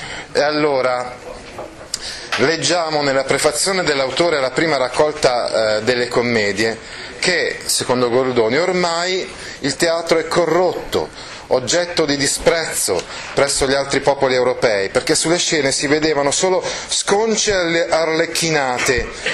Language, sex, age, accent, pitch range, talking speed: Italian, male, 40-59, native, 130-170 Hz, 110 wpm